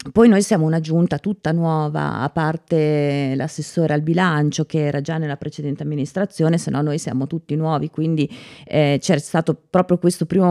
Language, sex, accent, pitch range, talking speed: Italian, female, native, 150-185 Hz, 175 wpm